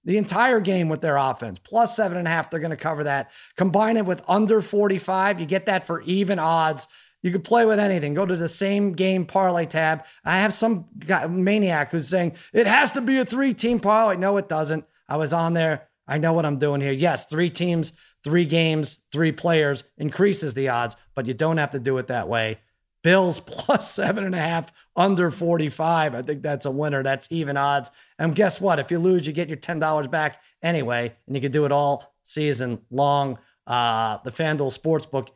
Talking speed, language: 210 wpm, English